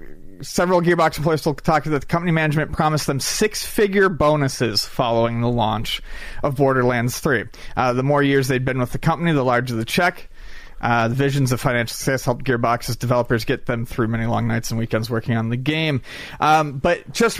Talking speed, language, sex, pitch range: 195 wpm, English, male, 125-170 Hz